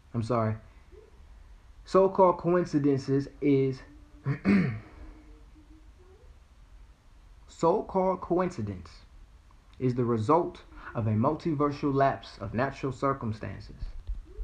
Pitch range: 95-150 Hz